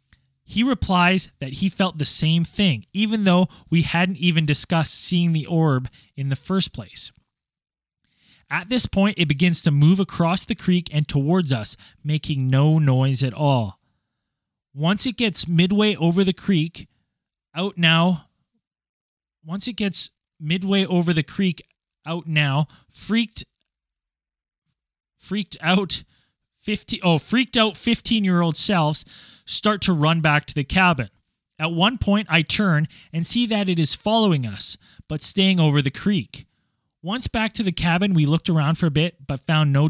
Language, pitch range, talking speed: English, 135-185 Hz, 155 wpm